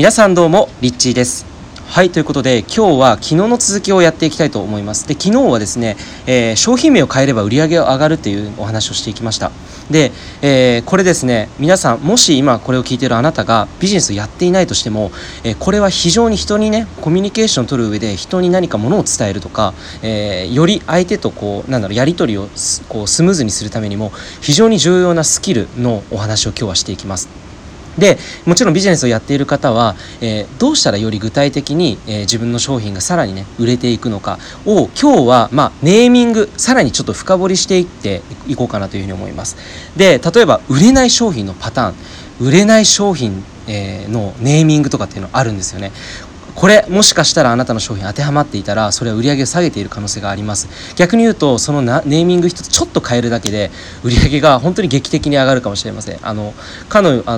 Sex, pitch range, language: male, 105-170 Hz, Japanese